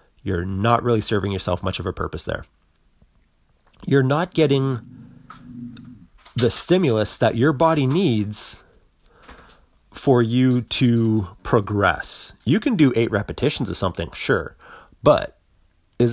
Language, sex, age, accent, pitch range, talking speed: English, male, 30-49, American, 100-145 Hz, 125 wpm